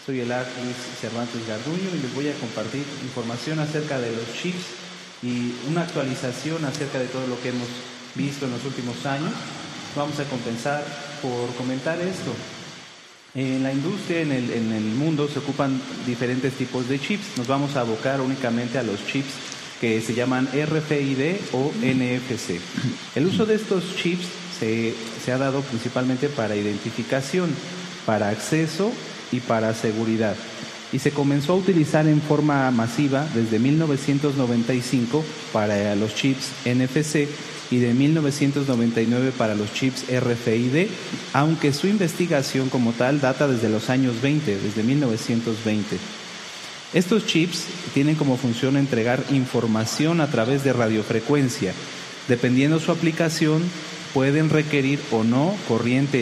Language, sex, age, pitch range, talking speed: Spanish, male, 30-49, 120-150 Hz, 140 wpm